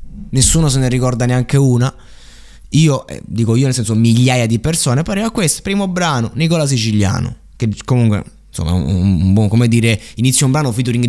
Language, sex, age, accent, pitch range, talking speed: Italian, male, 20-39, native, 115-165 Hz, 185 wpm